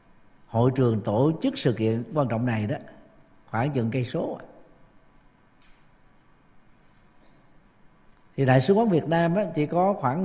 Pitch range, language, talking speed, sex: 120-155 Hz, Vietnamese, 140 wpm, male